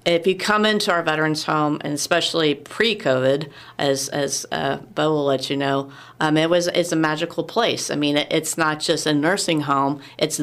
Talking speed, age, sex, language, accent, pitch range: 195 wpm, 40-59, female, English, American, 150-180 Hz